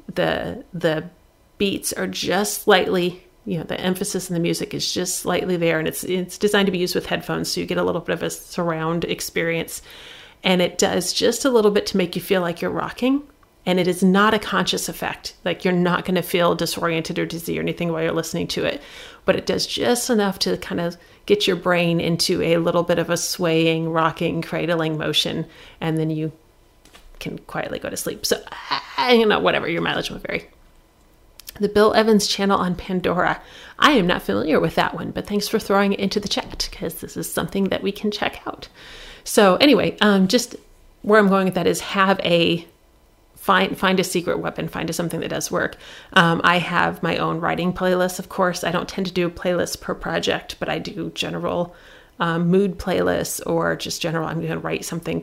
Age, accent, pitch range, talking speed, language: 40-59, American, 165-200 Hz, 210 wpm, English